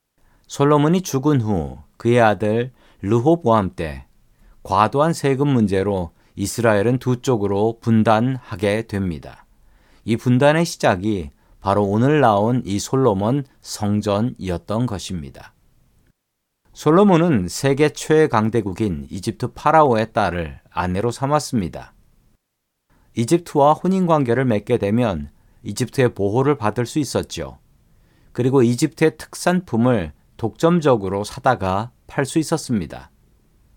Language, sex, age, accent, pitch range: Korean, male, 40-59, native, 100-135 Hz